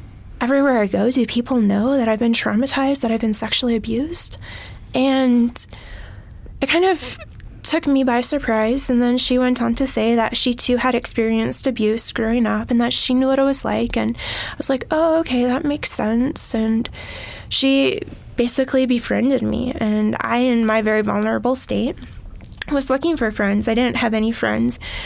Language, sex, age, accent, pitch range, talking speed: English, female, 10-29, American, 225-260 Hz, 180 wpm